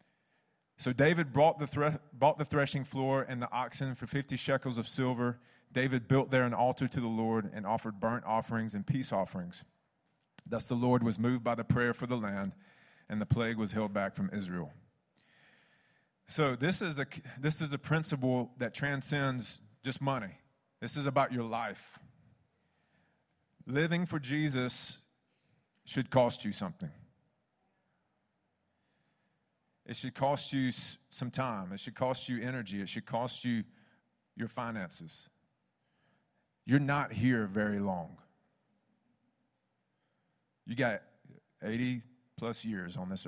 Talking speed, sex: 145 wpm, male